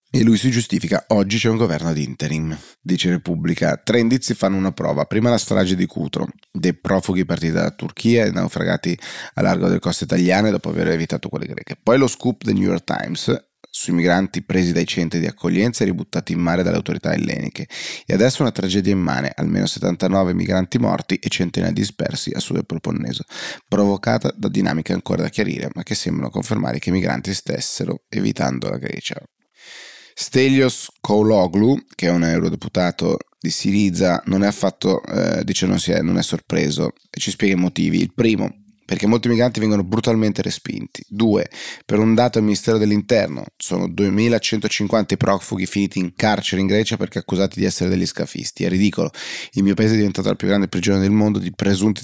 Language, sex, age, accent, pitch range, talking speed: Italian, male, 30-49, native, 90-110 Hz, 185 wpm